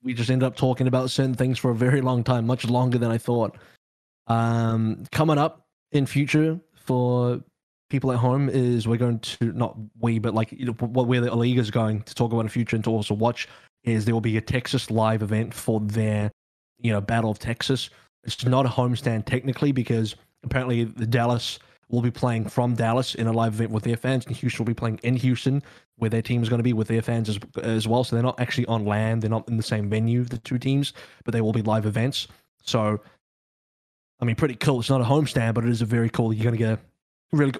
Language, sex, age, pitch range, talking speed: English, male, 20-39, 115-125 Hz, 240 wpm